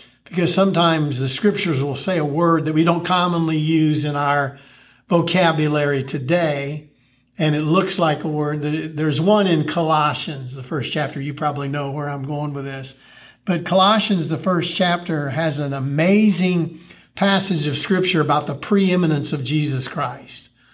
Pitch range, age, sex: 140-170 Hz, 50-69, male